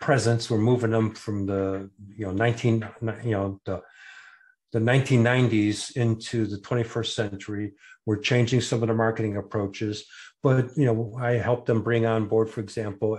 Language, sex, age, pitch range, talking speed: English, male, 50-69, 105-120 Hz, 175 wpm